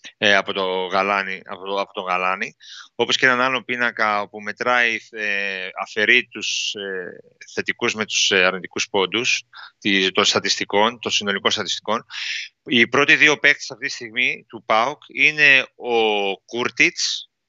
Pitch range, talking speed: 105-140 Hz, 130 wpm